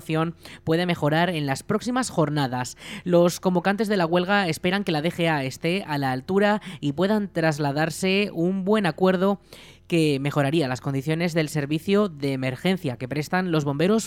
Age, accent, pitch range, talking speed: 20-39, Spanish, 145-185 Hz, 160 wpm